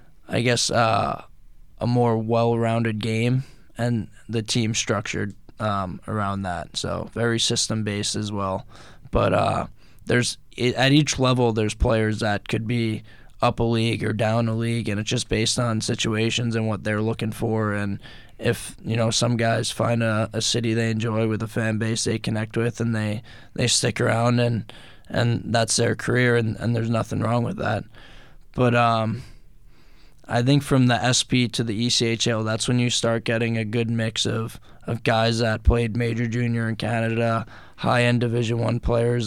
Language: English